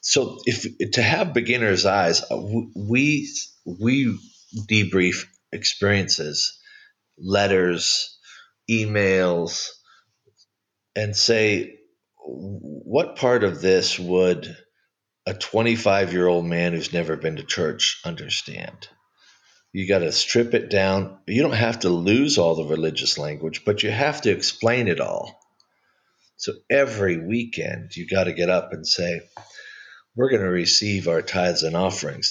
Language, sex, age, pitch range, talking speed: English, male, 40-59, 95-120 Hz, 125 wpm